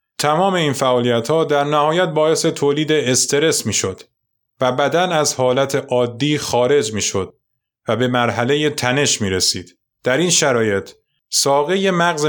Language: Persian